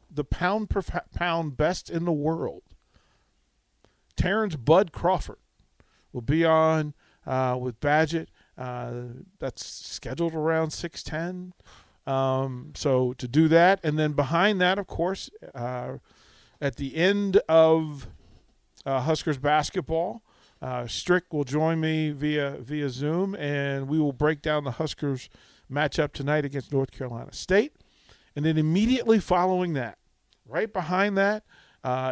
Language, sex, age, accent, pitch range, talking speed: English, male, 40-59, American, 135-170 Hz, 135 wpm